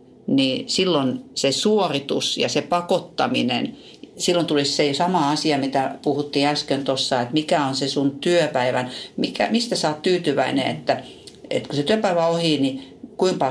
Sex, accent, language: female, native, Finnish